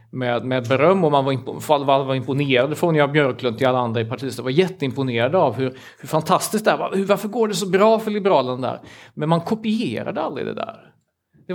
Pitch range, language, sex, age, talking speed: 125-165 Hz, Swedish, male, 30-49, 235 wpm